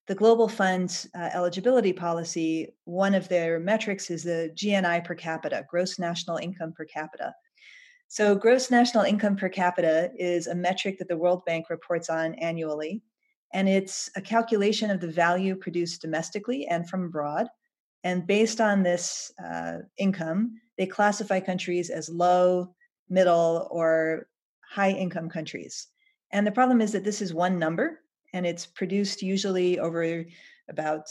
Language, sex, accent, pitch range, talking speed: English, female, American, 165-200 Hz, 150 wpm